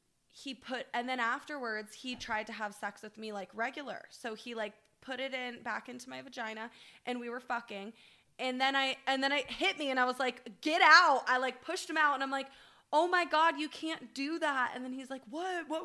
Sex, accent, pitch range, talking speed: female, American, 230-295 Hz, 240 wpm